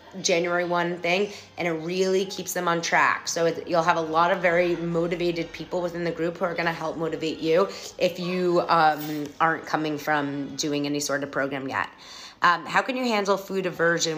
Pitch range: 160-195 Hz